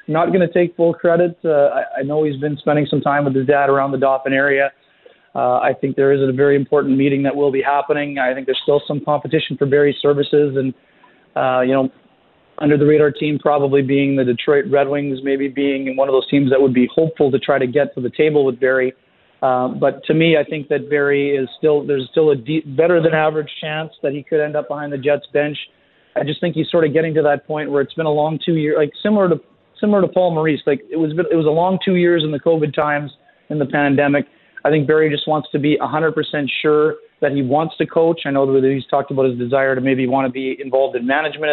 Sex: male